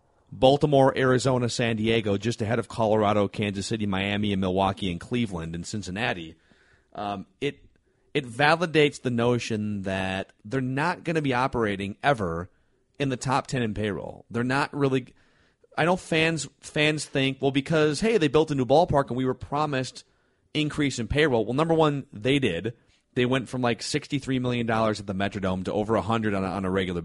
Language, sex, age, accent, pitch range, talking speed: English, male, 30-49, American, 100-135 Hz, 185 wpm